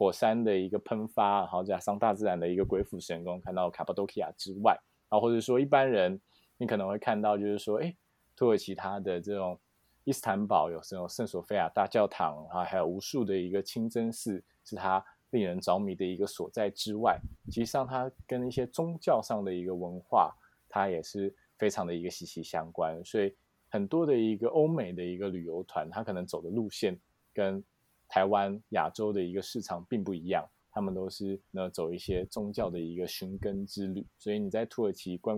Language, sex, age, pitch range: Chinese, male, 20-39, 90-105 Hz